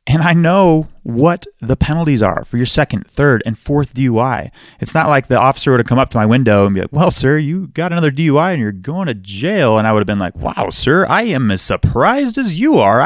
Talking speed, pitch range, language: 255 wpm, 110-150 Hz, English